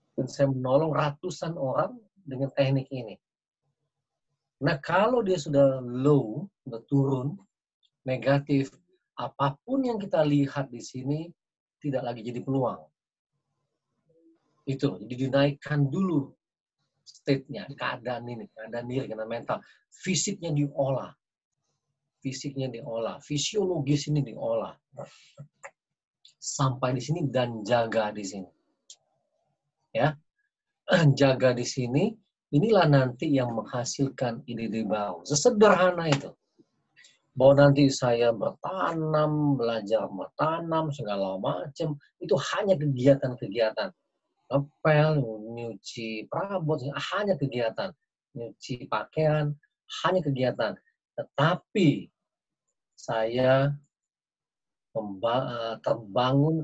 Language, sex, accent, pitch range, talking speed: Indonesian, male, native, 125-150 Hz, 90 wpm